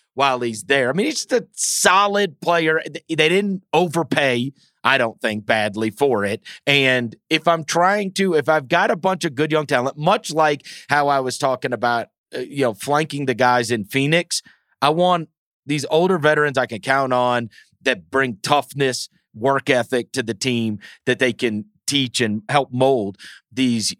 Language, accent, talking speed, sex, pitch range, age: English, American, 180 wpm, male, 125-185 Hz, 40-59